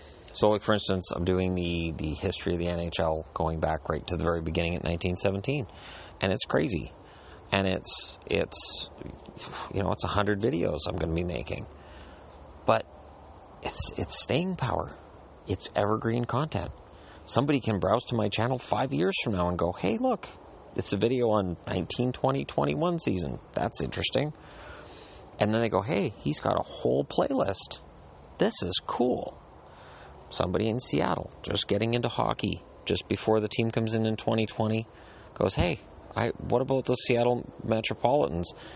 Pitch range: 85-110 Hz